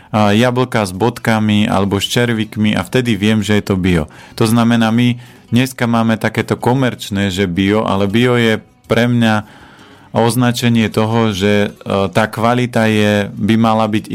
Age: 40-59